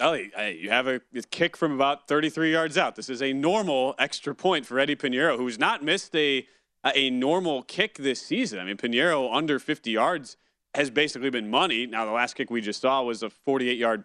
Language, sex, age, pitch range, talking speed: English, male, 30-49, 125-160 Hz, 210 wpm